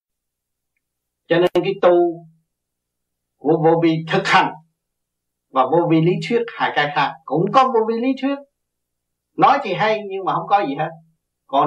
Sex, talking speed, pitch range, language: male, 170 wpm, 135-190 Hz, Vietnamese